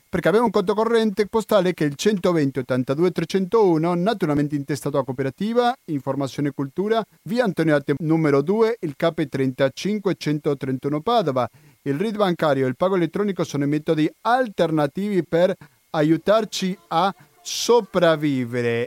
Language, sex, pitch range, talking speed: Italian, male, 145-190 Hz, 130 wpm